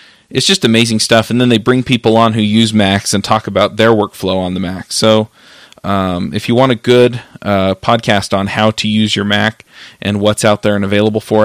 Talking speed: 225 wpm